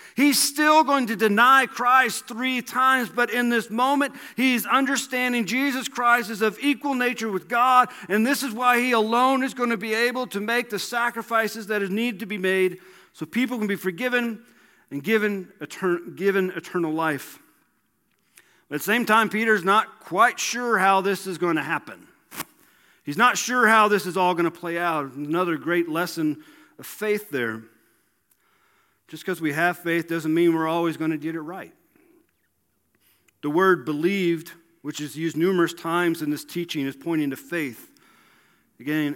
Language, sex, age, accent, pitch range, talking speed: English, male, 40-59, American, 155-240 Hz, 175 wpm